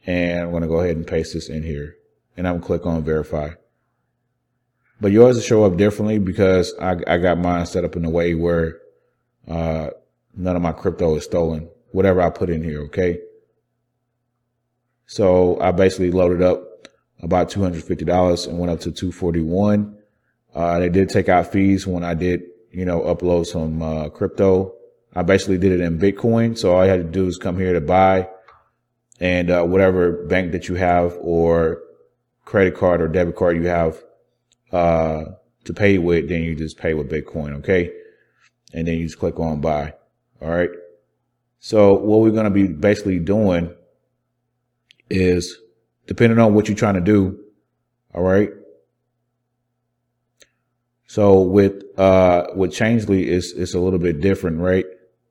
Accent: American